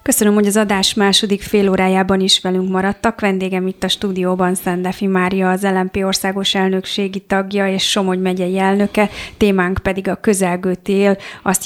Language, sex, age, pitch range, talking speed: Hungarian, female, 30-49, 185-200 Hz, 160 wpm